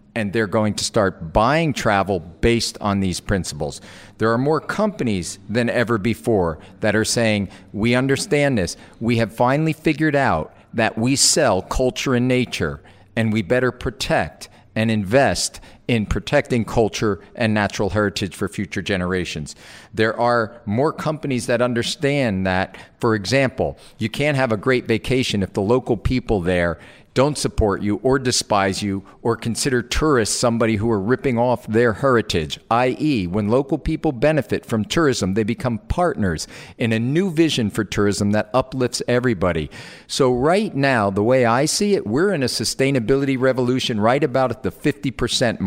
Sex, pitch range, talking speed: male, 105-135 Hz, 160 wpm